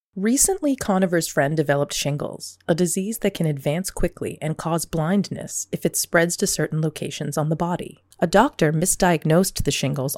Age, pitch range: 30-49, 145-190 Hz